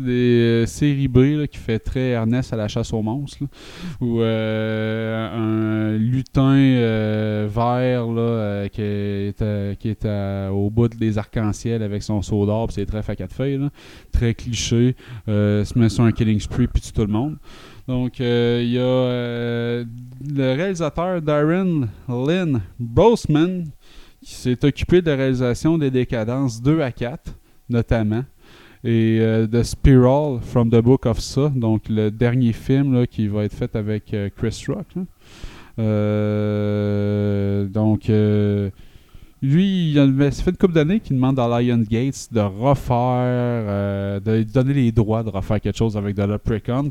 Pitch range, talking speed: 110-130 Hz, 165 wpm